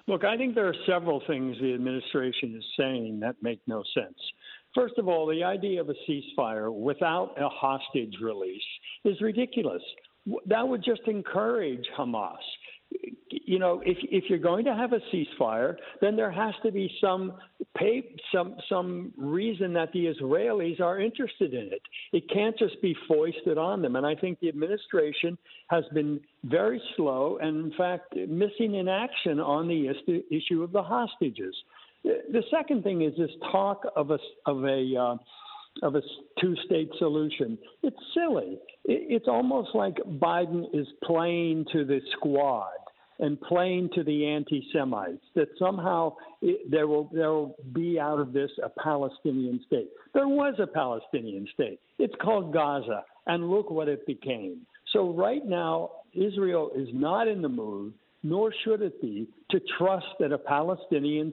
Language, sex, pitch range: English, male, 150-220 Hz